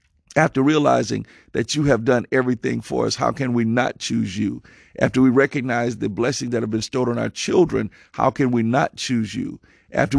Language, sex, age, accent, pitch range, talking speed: English, male, 50-69, American, 115-140 Hz, 200 wpm